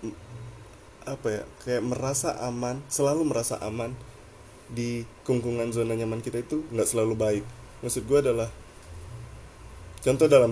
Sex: male